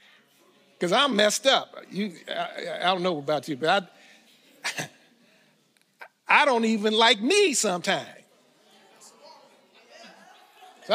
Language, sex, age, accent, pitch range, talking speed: English, male, 50-69, American, 170-245 Hz, 110 wpm